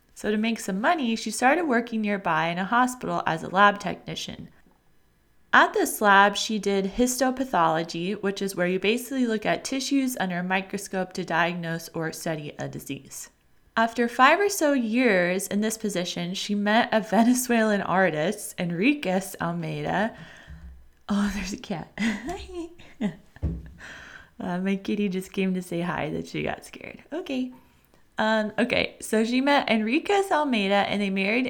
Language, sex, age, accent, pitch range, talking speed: English, female, 20-39, American, 185-235 Hz, 155 wpm